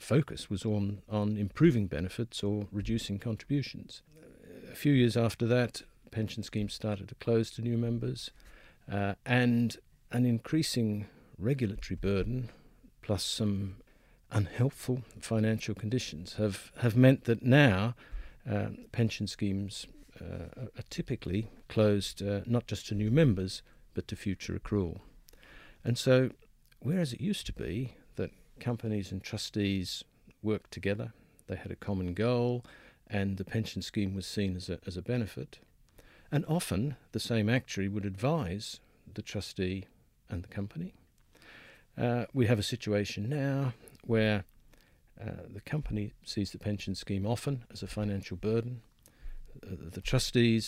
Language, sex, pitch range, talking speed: English, male, 100-120 Hz, 140 wpm